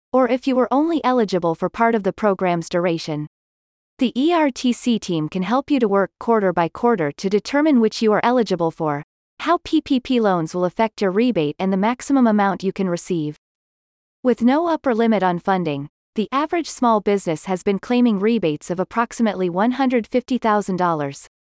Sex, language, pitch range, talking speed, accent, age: female, English, 180-245 Hz, 170 wpm, American, 30-49